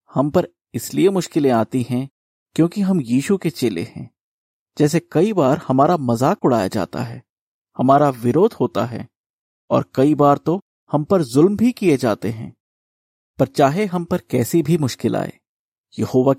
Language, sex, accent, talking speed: Hindi, male, native, 160 wpm